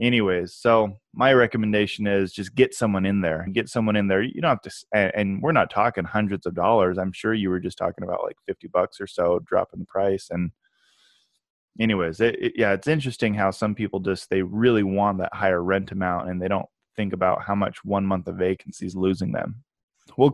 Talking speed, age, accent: 215 wpm, 20-39, American